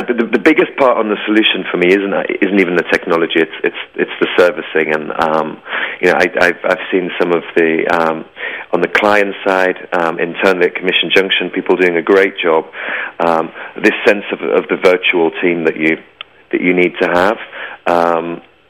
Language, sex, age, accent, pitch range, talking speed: English, male, 30-49, British, 80-100 Hz, 195 wpm